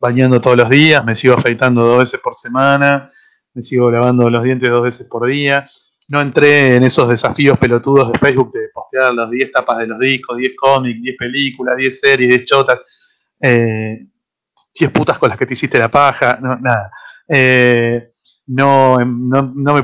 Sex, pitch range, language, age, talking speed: male, 120-145 Hz, Spanish, 30-49, 185 wpm